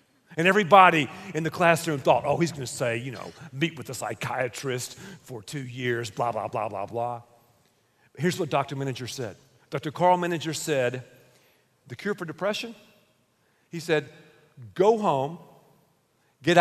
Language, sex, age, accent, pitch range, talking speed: English, male, 50-69, American, 145-235 Hz, 160 wpm